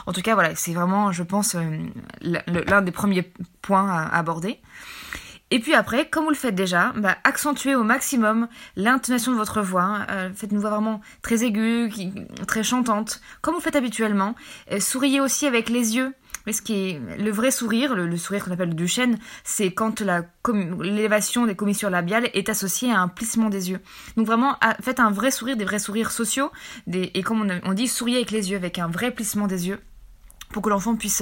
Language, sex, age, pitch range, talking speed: French, female, 20-39, 190-240 Hz, 200 wpm